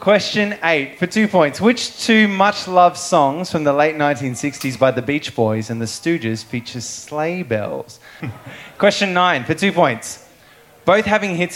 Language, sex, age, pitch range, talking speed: English, male, 20-39, 120-175 Hz, 160 wpm